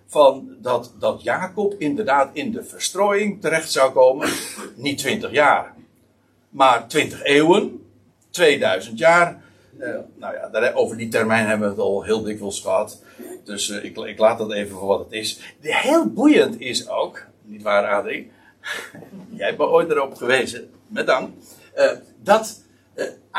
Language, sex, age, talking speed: Dutch, male, 60-79, 165 wpm